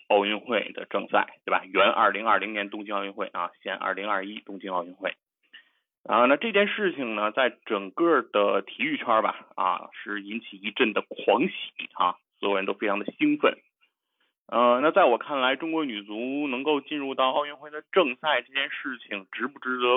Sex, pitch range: male, 110-150 Hz